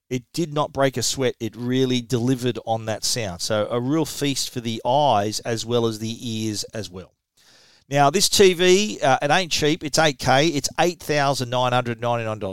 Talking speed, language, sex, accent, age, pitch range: 175 wpm, English, male, Australian, 40-59, 110-140 Hz